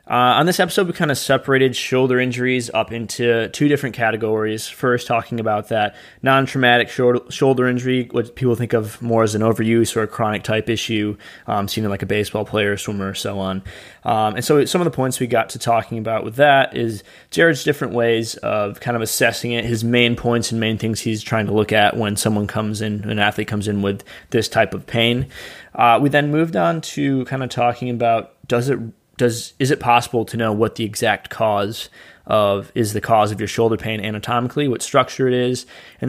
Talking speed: 215 wpm